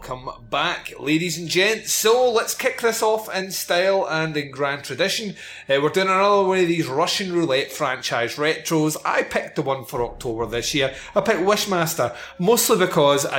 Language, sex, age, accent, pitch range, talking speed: English, male, 30-49, British, 135-195 Hz, 180 wpm